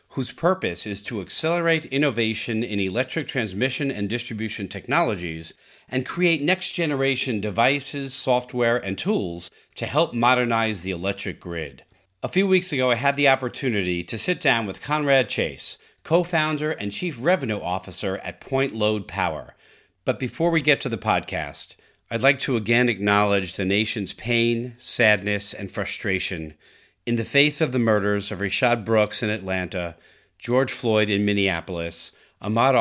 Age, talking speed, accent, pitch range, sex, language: 40-59, 150 wpm, American, 95-125 Hz, male, English